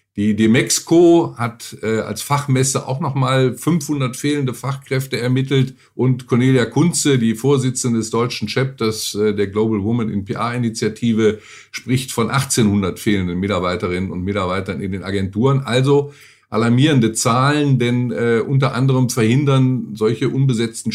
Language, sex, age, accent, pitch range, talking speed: German, male, 50-69, German, 110-135 Hz, 130 wpm